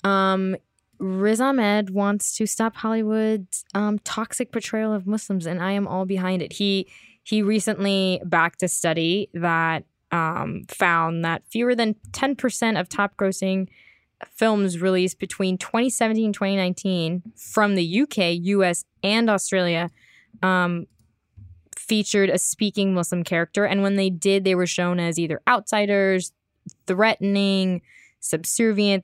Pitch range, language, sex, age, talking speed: 170-200 Hz, English, female, 10-29, 140 wpm